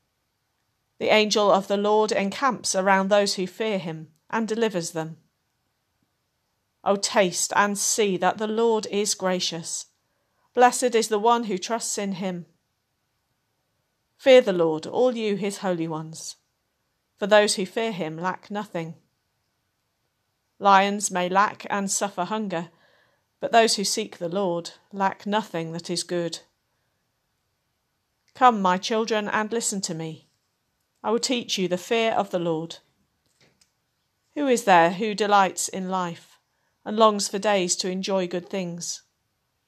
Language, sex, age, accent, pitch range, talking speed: English, female, 50-69, British, 175-215 Hz, 145 wpm